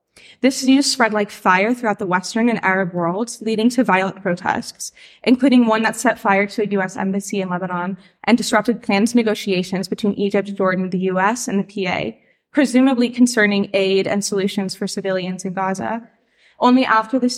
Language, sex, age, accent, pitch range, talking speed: English, female, 20-39, American, 190-230 Hz, 175 wpm